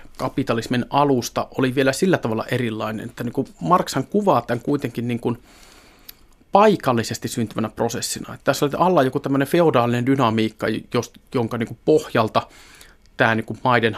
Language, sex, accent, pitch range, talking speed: Finnish, male, native, 115-155 Hz, 150 wpm